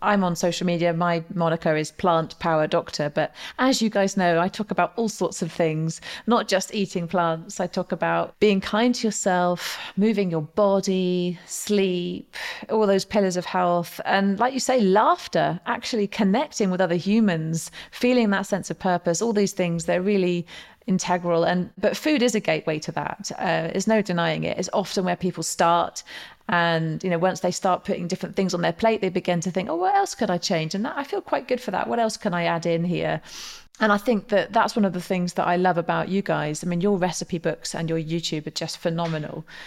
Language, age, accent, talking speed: English, 30-49, British, 215 wpm